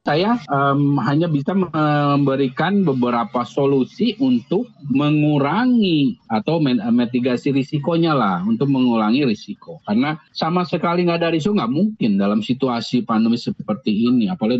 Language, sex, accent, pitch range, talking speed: Indonesian, male, native, 125-195 Hz, 125 wpm